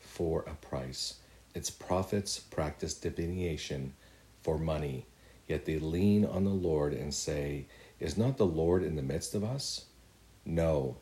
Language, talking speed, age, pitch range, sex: English, 145 wpm, 50-69, 75-90 Hz, male